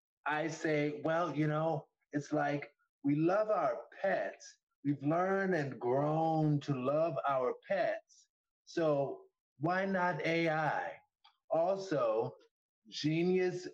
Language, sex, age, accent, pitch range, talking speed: English, male, 30-49, American, 135-175 Hz, 110 wpm